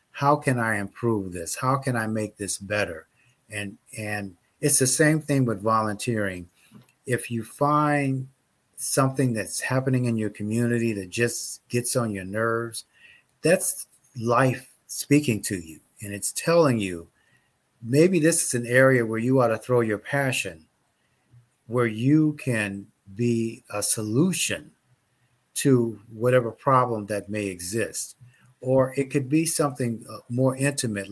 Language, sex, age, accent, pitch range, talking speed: English, male, 50-69, American, 105-130 Hz, 145 wpm